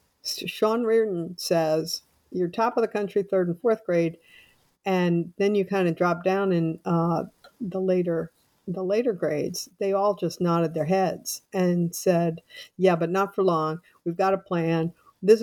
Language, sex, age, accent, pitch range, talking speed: English, female, 50-69, American, 170-200 Hz, 170 wpm